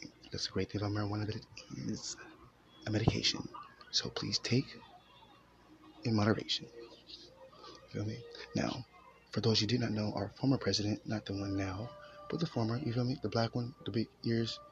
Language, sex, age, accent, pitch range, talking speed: English, male, 20-39, American, 100-120 Hz, 185 wpm